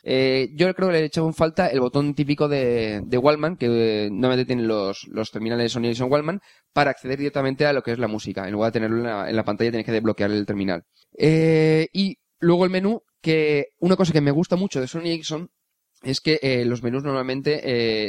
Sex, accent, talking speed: male, Spanish, 235 wpm